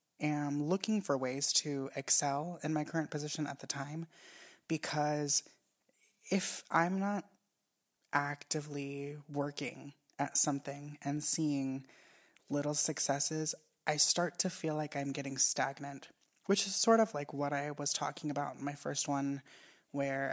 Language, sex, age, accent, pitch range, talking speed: English, female, 20-39, American, 140-160 Hz, 140 wpm